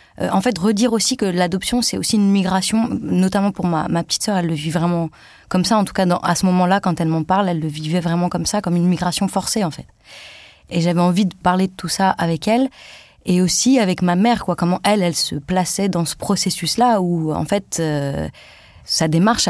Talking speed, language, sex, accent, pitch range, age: 235 wpm, French, female, French, 170-200 Hz, 20-39